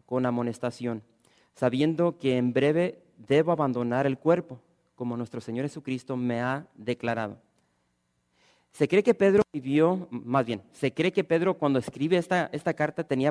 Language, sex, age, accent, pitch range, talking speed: English, male, 40-59, Mexican, 120-145 Hz, 155 wpm